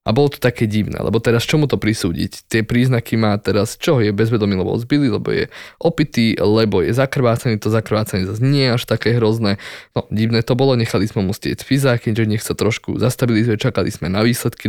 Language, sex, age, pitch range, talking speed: Slovak, male, 20-39, 105-120 Hz, 210 wpm